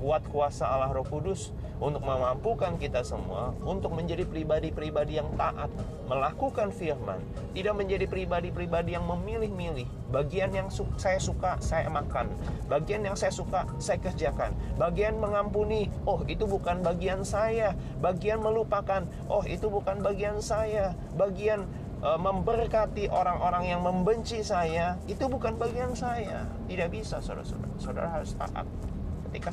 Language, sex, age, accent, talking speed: Indonesian, male, 30-49, native, 135 wpm